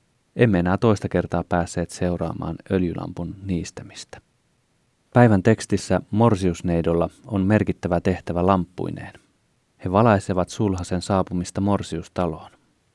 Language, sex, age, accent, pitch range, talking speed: Finnish, male, 30-49, native, 85-100 Hz, 95 wpm